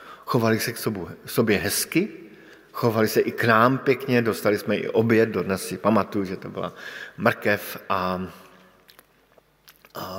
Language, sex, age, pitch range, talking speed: Slovak, male, 50-69, 115-140 Hz, 145 wpm